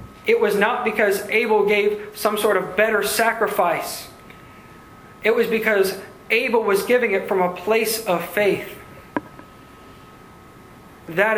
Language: English